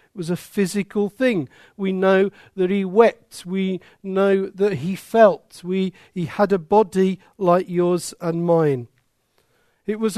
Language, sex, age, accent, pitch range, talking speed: English, male, 50-69, British, 185-230 Hz, 155 wpm